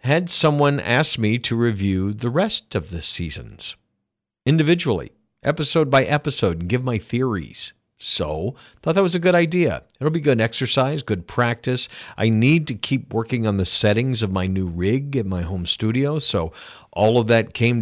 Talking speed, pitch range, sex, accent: 180 wpm, 95-125 Hz, male, American